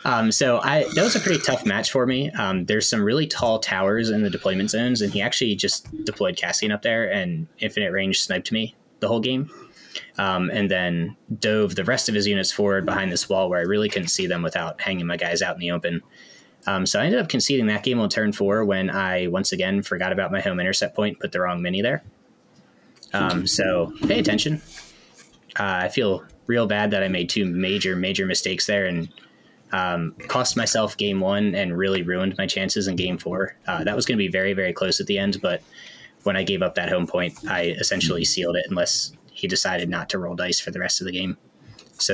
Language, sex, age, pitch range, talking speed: English, male, 20-39, 95-130 Hz, 225 wpm